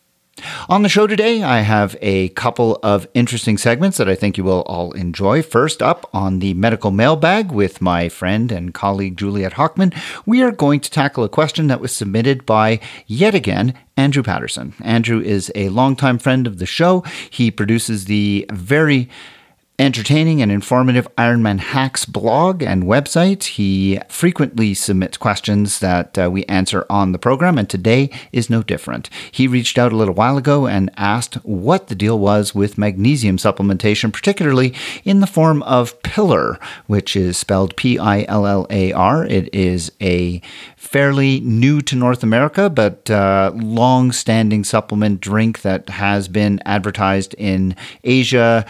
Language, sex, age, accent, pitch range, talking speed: English, male, 40-59, American, 100-130 Hz, 165 wpm